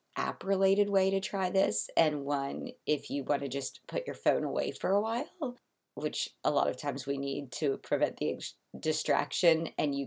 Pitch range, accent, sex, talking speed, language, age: 145-190 Hz, American, female, 195 wpm, English, 30-49